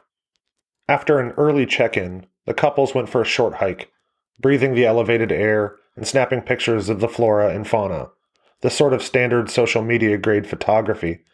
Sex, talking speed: male, 160 wpm